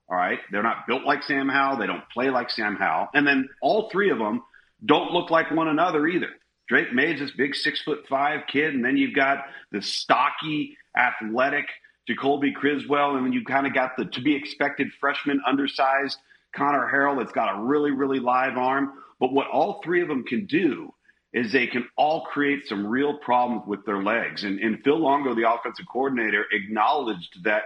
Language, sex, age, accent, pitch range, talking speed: English, male, 40-59, American, 120-150 Hz, 200 wpm